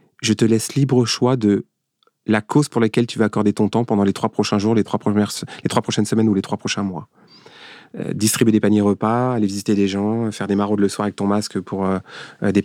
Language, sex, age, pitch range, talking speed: French, male, 30-49, 100-120 Hz, 240 wpm